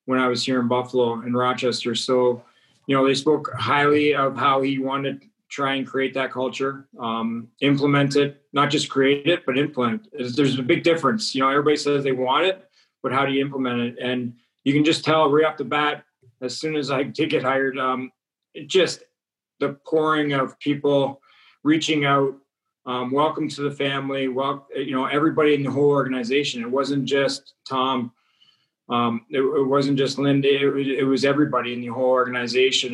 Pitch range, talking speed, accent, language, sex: 130-145 Hz, 195 wpm, American, English, male